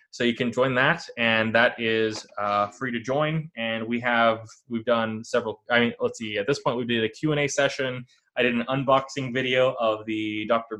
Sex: male